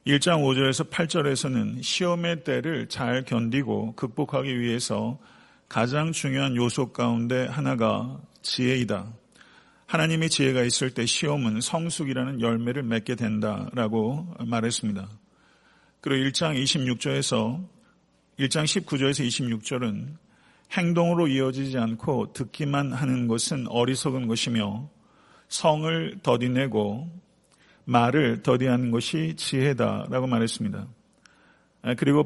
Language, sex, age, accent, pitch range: Korean, male, 50-69, native, 120-155 Hz